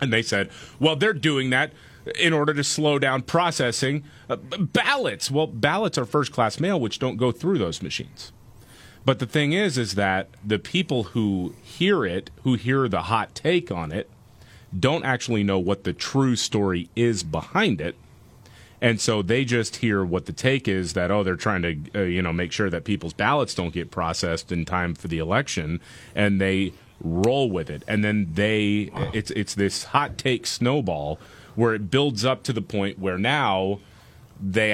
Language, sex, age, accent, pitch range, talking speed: English, male, 30-49, American, 95-120 Hz, 190 wpm